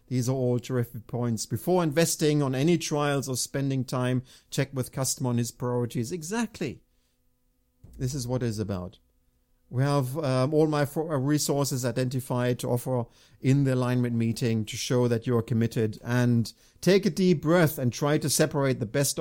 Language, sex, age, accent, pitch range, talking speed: English, male, 50-69, German, 120-155 Hz, 175 wpm